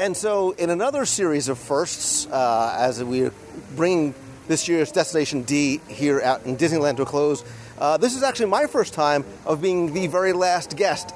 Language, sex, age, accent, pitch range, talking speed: English, male, 40-59, American, 135-180 Hz, 190 wpm